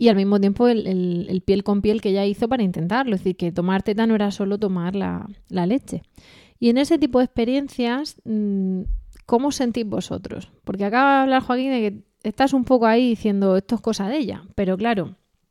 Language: Spanish